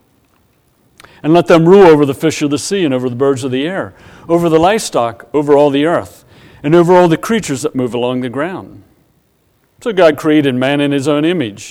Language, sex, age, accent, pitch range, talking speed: English, male, 50-69, American, 130-175 Hz, 215 wpm